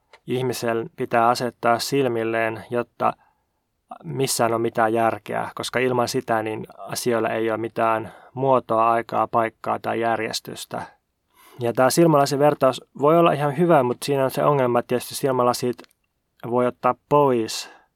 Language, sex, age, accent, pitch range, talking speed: Finnish, male, 20-39, native, 115-140 Hz, 135 wpm